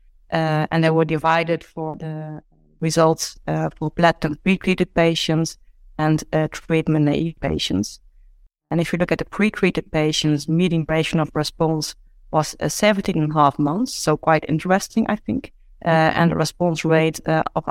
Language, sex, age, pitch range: English, female, 30-49, 155-175 Hz